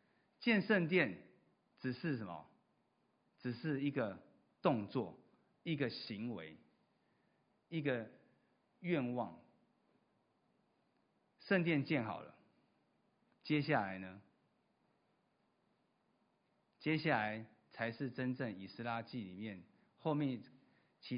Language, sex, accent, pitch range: Chinese, male, native, 115-160 Hz